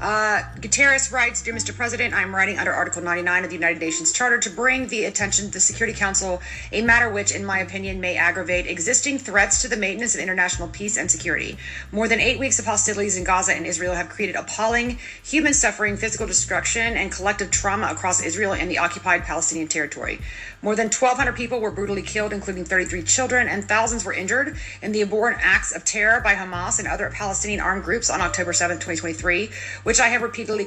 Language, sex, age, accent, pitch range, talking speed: English, female, 30-49, American, 185-230 Hz, 200 wpm